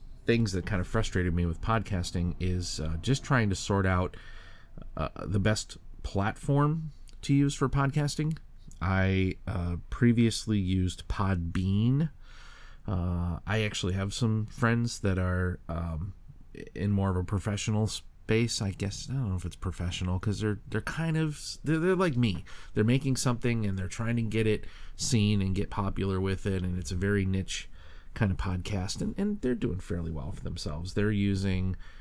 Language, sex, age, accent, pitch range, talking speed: English, male, 30-49, American, 90-110 Hz, 175 wpm